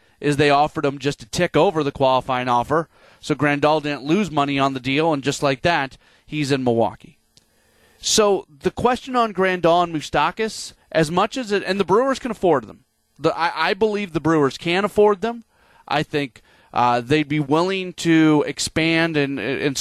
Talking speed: 190 wpm